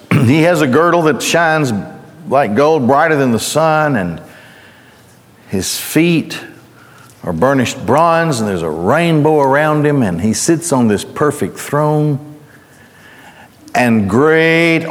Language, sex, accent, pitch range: English, male, American, 115-150 Hz